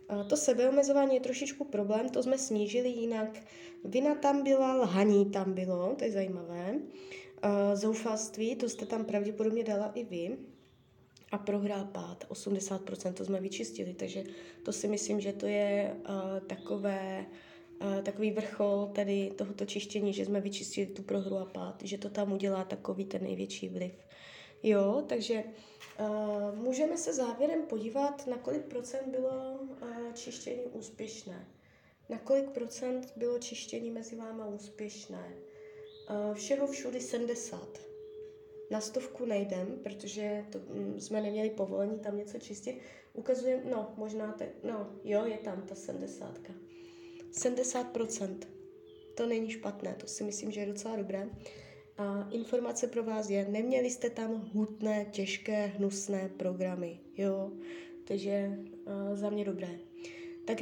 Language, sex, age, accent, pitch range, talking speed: Czech, female, 20-39, native, 200-255 Hz, 140 wpm